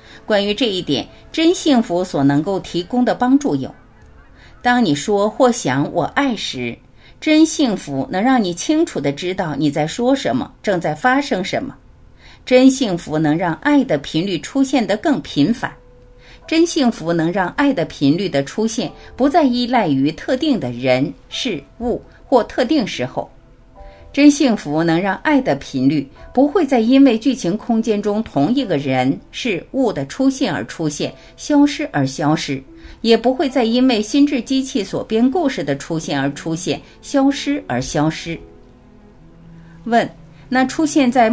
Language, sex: Chinese, female